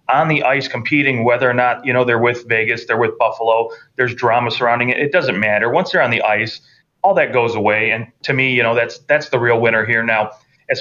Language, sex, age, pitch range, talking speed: English, male, 30-49, 115-130 Hz, 245 wpm